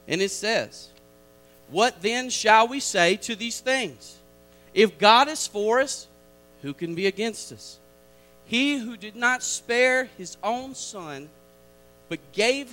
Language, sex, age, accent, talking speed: English, male, 40-59, American, 145 wpm